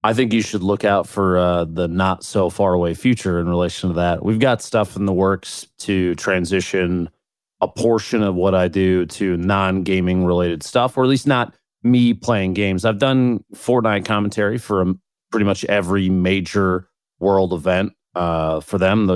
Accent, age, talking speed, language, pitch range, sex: American, 30-49, 185 wpm, English, 90-105 Hz, male